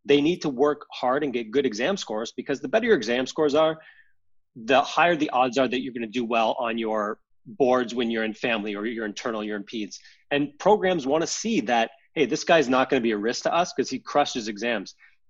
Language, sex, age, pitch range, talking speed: English, male, 30-49, 115-150 Hz, 245 wpm